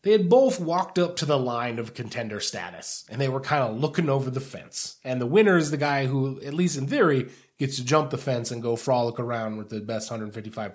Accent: American